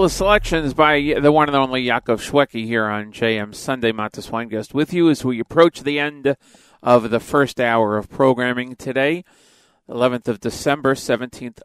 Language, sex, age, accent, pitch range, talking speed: English, male, 40-59, American, 115-150 Hz, 170 wpm